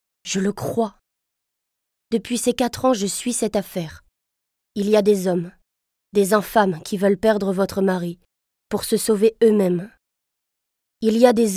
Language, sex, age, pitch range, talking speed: French, female, 20-39, 195-235 Hz, 160 wpm